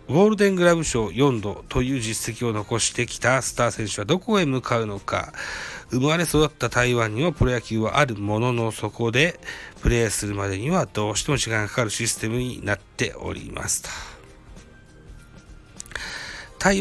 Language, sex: Japanese, male